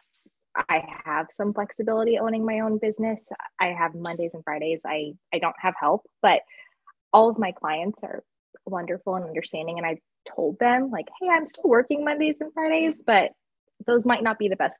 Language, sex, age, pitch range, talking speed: English, female, 20-39, 170-265 Hz, 185 wpm